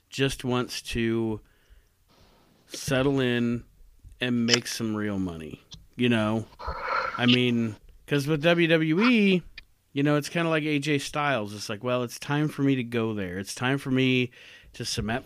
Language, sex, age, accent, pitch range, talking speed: English, male, 40-59, American, 110-140 Hz, 160 wpm